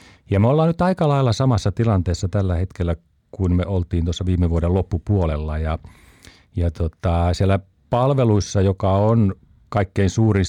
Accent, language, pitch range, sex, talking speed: native, Finnish, 85-110 Hz, male, 150 wpm